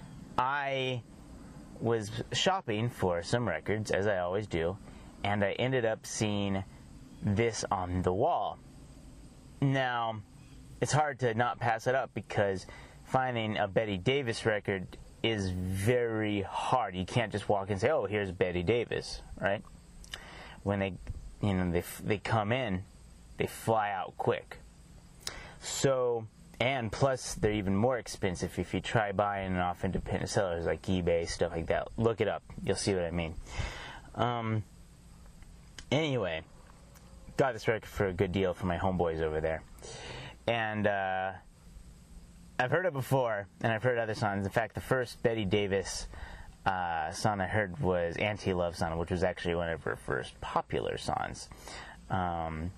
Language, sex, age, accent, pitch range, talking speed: English, male, 30-49, American, 90-115 Hz, 155 wpm